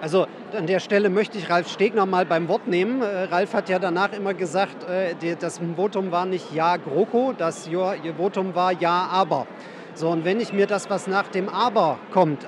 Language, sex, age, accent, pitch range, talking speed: German, male, 40-59, German, 175-200 Hz, 190 wpm